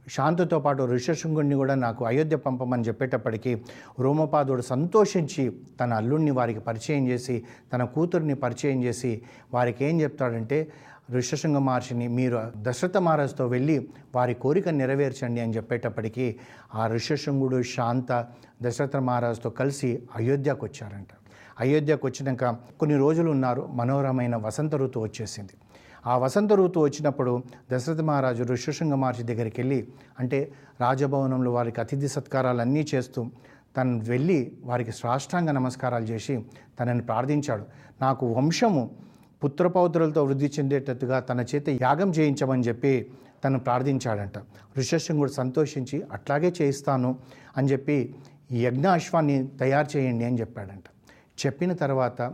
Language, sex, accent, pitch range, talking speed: Telugu, male, native, 120-145 Hz, 115 wpm